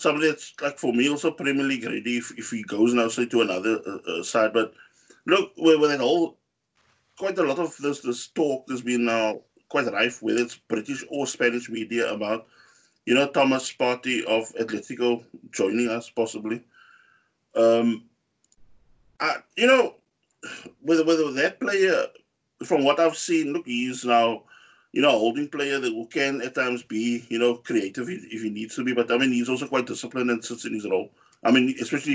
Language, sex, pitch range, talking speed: English, male, 115-170 Hz, 185 wpm